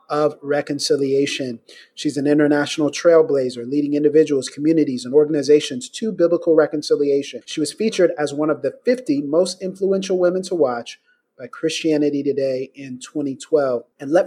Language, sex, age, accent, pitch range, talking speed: English, male, 30-49, American, 145-200 Hz, 145 wpm